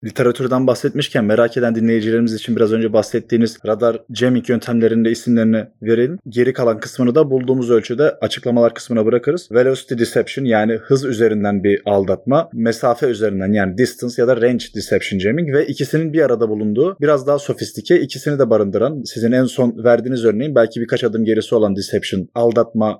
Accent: native